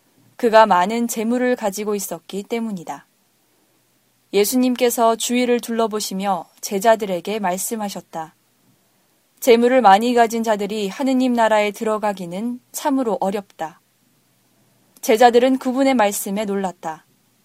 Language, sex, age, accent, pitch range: Korean, female, 20-39, native, 195-245 Hz